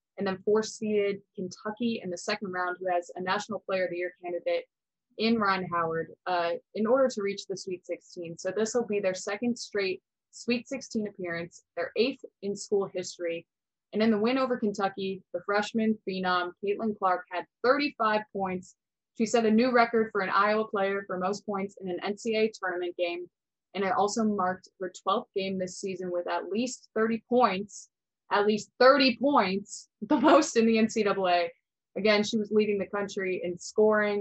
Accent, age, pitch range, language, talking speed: American, 20-39, 180-215 Hz, English, 185 wpm